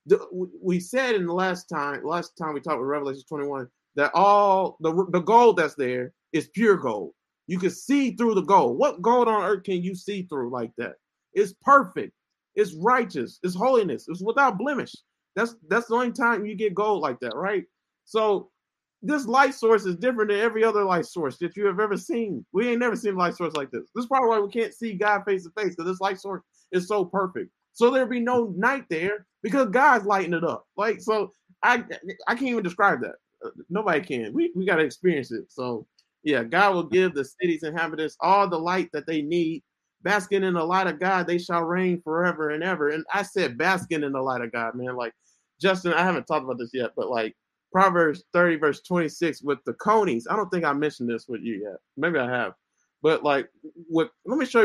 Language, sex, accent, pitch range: English, male, American, 160-215 Hz